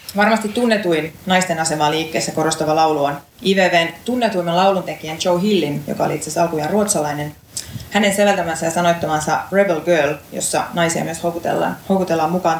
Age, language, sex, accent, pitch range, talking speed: 30-49, Finnish, female, native, 160-195 Hz, 140 wpm